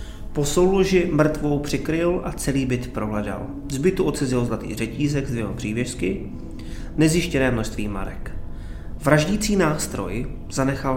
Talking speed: 115 wpm